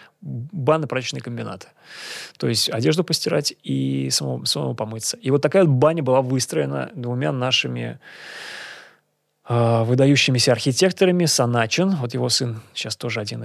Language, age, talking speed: Russian, 20-39, 130 wpm